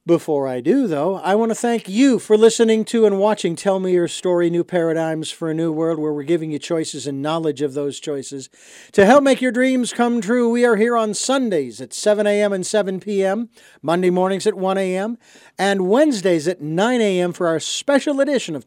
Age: 50-69